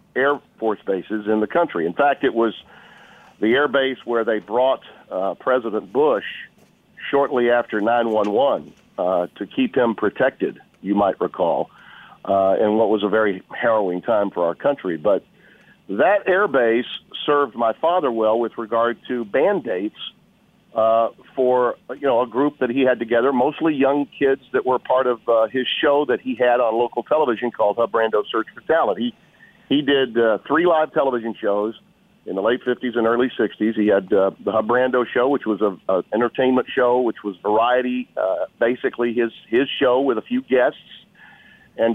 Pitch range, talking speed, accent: 110-130 Hz, 180 wpm, American